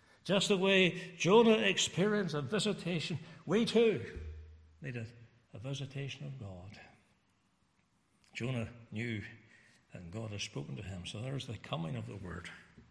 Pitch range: 115-140 Hz